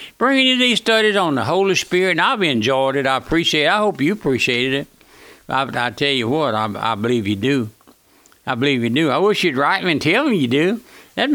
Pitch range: 140-200 Hz